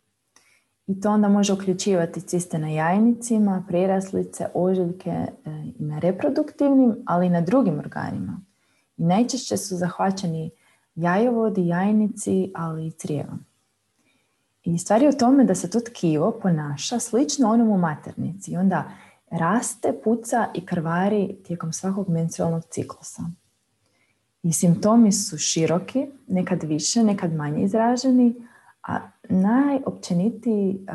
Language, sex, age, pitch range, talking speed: Croatian, female, 30-49, 165-215 Hz, 120 wpm